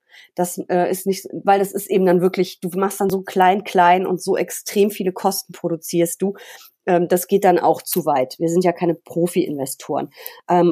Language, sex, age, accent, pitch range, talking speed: German, female, 30-49, German, 160-185 Hz, 200 wpm